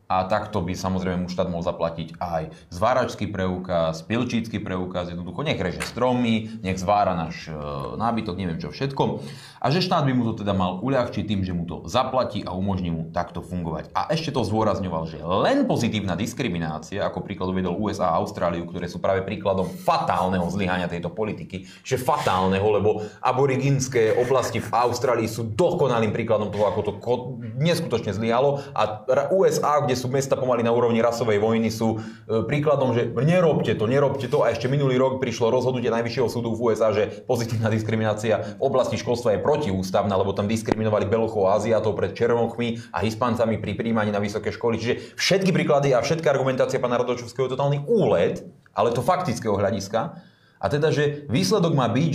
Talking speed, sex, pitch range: 170 wpm, male, 95-130 Hz